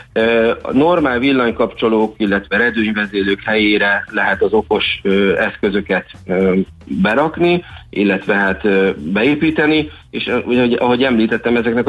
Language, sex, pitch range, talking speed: Hungarian, male, 100-120 Hz, 90 wpm